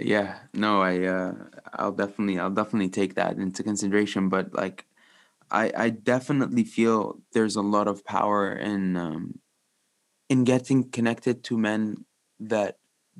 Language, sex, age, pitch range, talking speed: English, male, 20-39, 105-130 Hz, 140 wpm